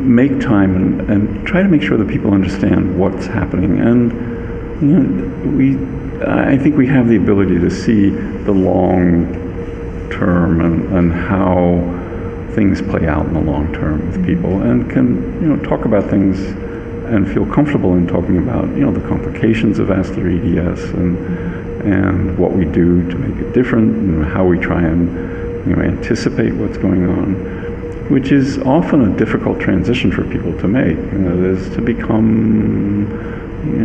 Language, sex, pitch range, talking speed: English, male, 90-110 Hz, 170 wpm